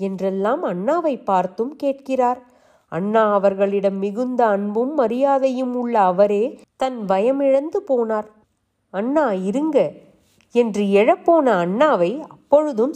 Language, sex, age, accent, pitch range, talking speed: Tamil, female, 30-49, native, 200-265 Hz, 95 wpm